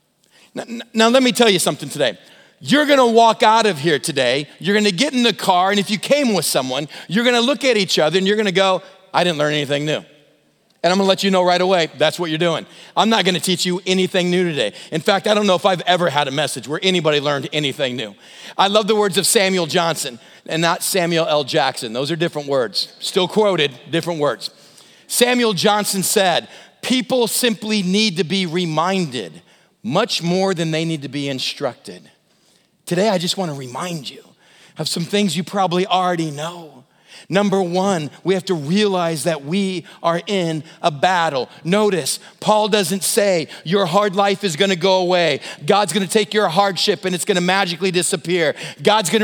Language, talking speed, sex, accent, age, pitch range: English, 210 wpm, male, American, 40-59, 170-210 Hz